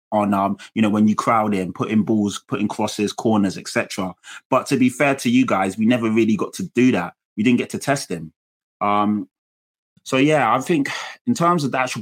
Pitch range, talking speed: 105-120 Hz, 220 wpm